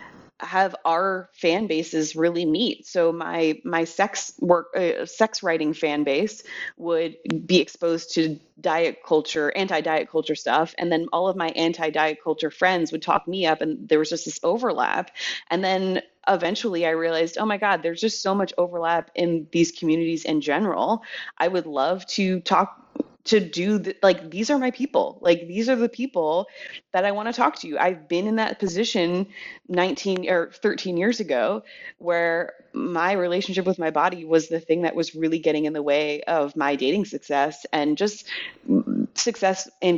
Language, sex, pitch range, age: English, female, 155-190 Hz, 30-49